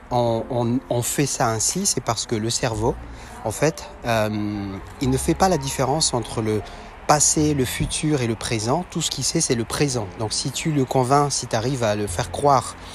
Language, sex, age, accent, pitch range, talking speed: French, male, 30-49, French, 110-135 Hz, 220 wpm